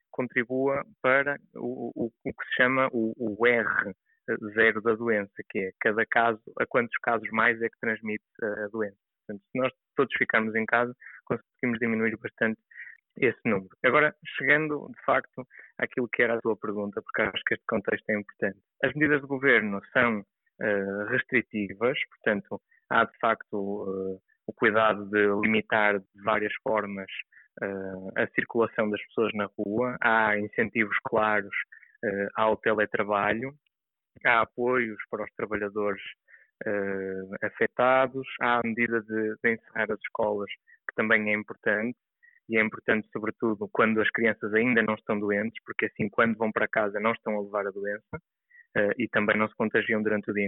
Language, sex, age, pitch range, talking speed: Portuguese, male, 20-39, 105-120 Hz, 165 wpm